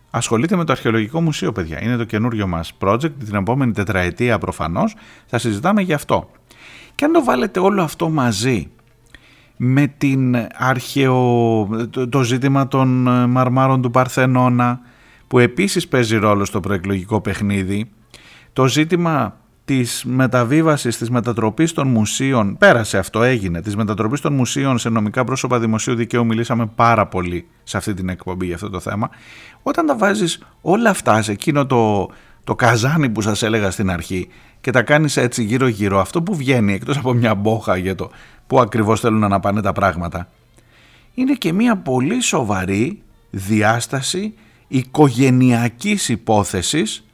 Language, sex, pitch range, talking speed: Greek, male, 110-135 Hz, 150 wpm